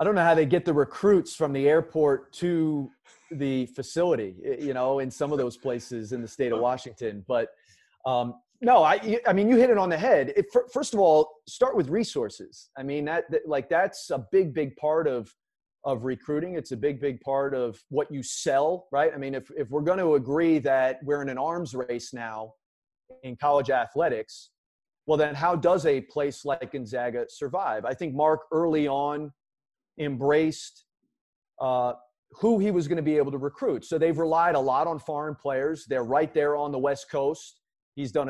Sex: male